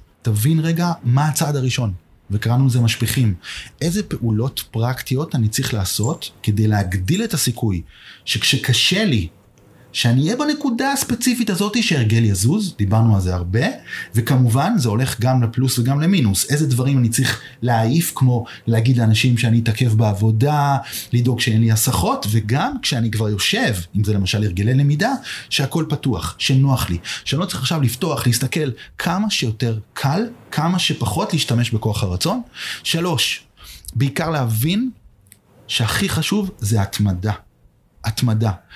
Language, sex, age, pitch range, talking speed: Hebrew, male, 30-49, 110-145 Hz, 135 wpm